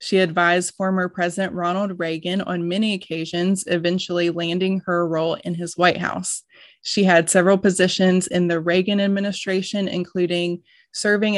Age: 20-39